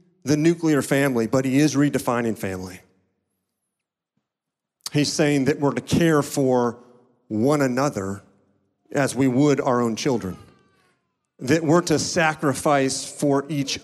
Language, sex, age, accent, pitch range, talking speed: English, male, 40-59, American, 115-145 Hz, 125 wpm